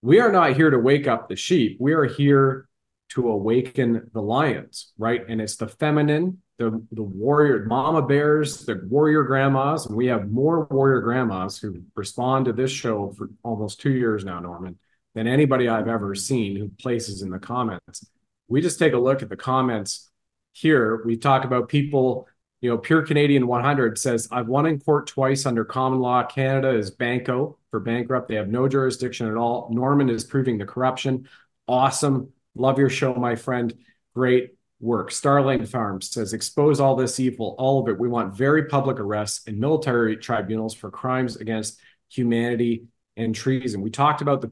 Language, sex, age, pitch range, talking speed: English, male, 40-59, 115-135 Hz, 180 wpm